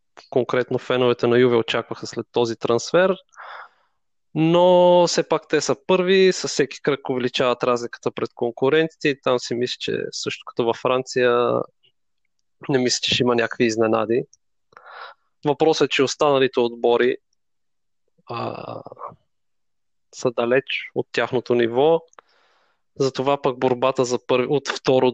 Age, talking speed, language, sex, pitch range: 20-39, 130 wpm, Bulgarian, male, 120-145 Hz